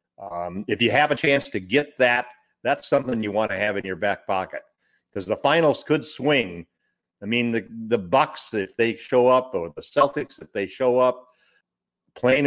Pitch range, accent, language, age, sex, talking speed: 105-140 Hz, American, English, 50-69, male, 195 wpm